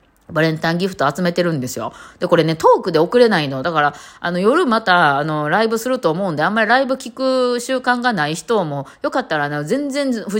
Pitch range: 140-220 Hz